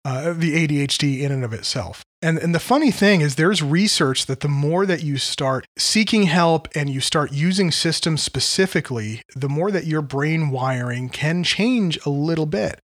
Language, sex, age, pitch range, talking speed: English, male, 30-49, 125-165 Hz, 185 wpm